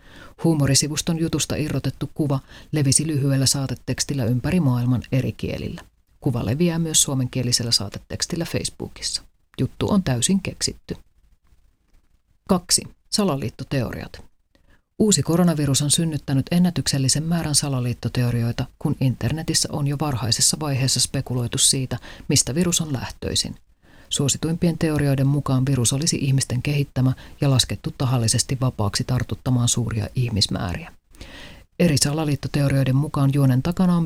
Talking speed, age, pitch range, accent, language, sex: 110 wpm, 40-59, 120-150 Hz, native, Finnish, female